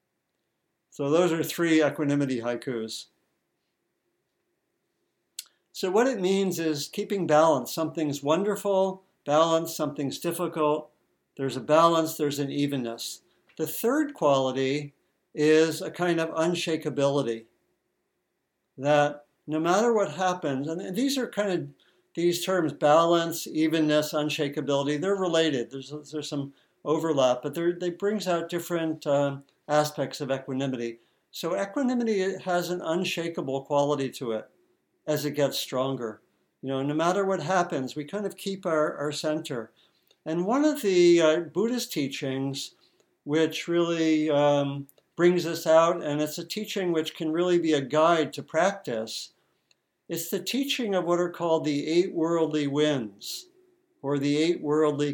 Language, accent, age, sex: English, American, 60-79, male